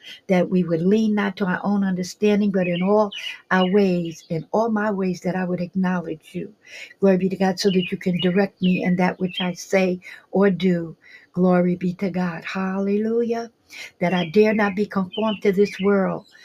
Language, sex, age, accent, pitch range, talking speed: English, female, 60-79, American, 180-210 Hz, 195 wpm